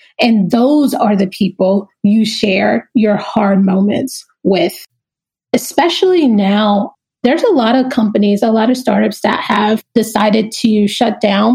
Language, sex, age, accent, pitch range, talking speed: English, female, 30-49, American, 215-270 Hz, 145 wpm